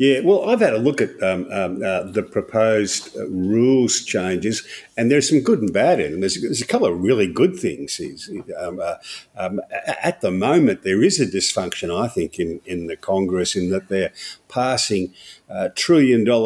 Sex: male